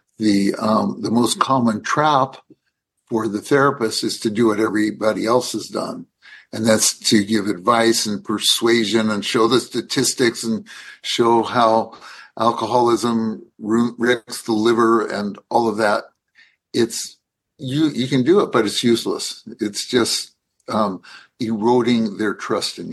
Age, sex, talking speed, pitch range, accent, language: 60-79, male, 145 wpm, 105-120 Hz, American, English